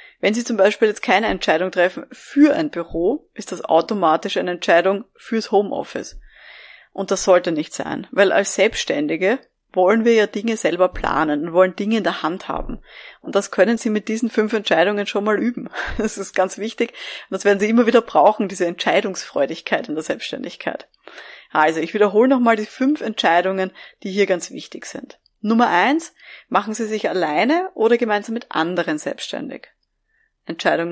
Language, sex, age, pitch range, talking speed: German, female, 20-39, 185-245 Hz, 175 wpm